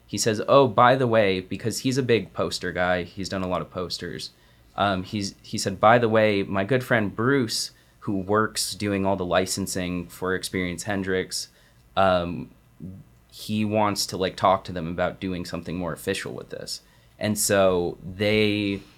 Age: 20-39